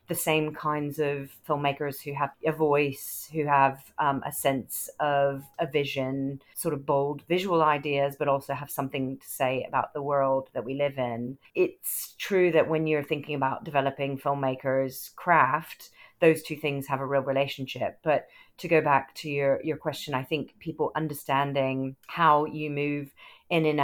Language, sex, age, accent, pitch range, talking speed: English, female, 40-59, British, 130-150 Hz, 175 wpm